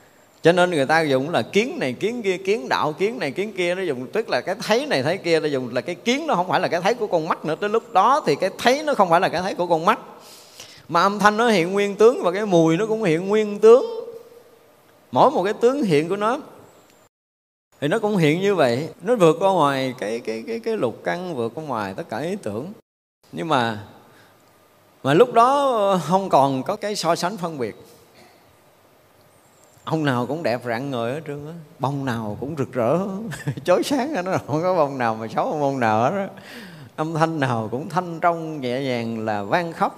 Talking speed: 230 wpm